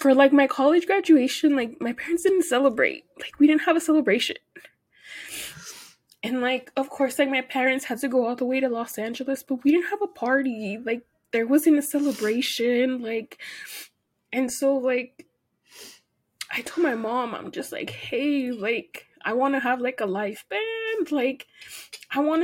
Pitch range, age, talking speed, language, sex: 235-300 Hz, 20-39, 180 wpm, English, female